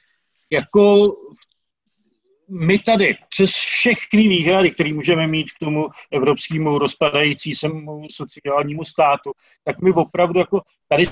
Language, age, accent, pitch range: English, 40-59, Czech, 140-175 Hz